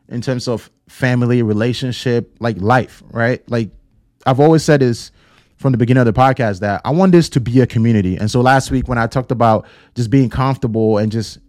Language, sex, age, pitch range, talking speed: English, male, 20-39, 110-135 Hz, 210 wpm